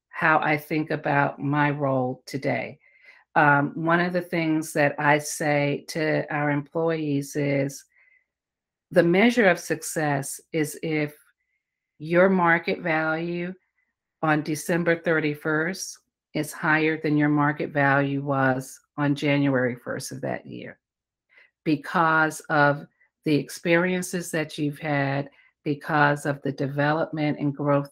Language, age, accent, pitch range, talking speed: English, 50-69, American, 140-165 Hz, 120 wpm